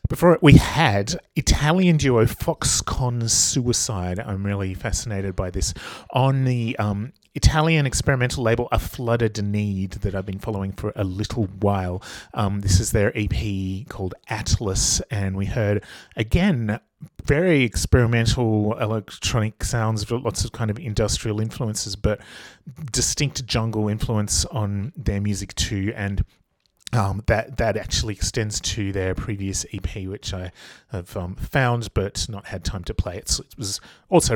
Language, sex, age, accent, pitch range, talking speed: English, male, 30-49, Australian, 100-120 Hz, 145 wpm